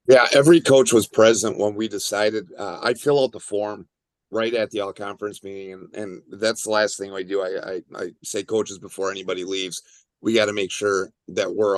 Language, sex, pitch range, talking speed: English, male, 100-125 Hz, 215 wpm